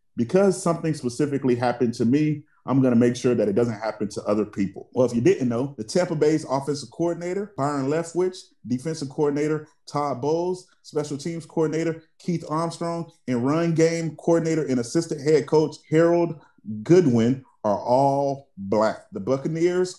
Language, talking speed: English, 160 wpm